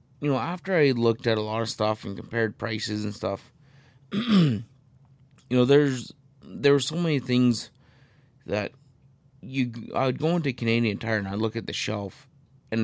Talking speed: 175 wpm